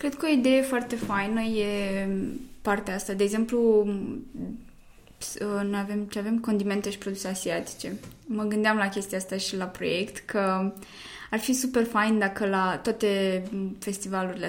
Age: 20-39